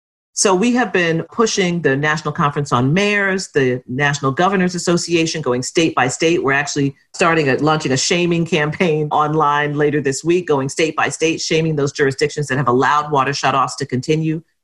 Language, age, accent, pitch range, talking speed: English, 40-59, American, 135-165 Hz, 180 wpm